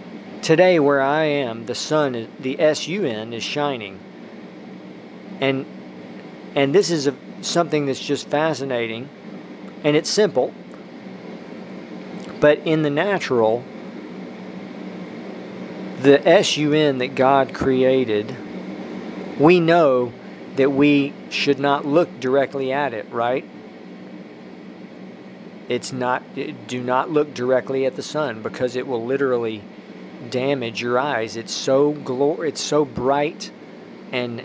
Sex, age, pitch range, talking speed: male, 40-59, 125-155 Hz, 120 wpm